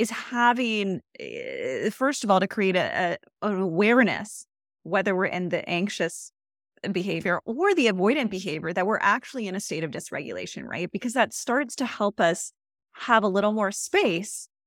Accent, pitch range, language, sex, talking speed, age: American, 180-225 Hz, English, female, 160 wpm, 20-39